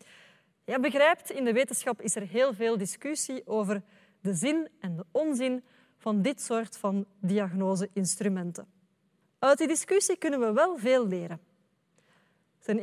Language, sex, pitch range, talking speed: Dutch, female, 195-260 Hz, 140 wpm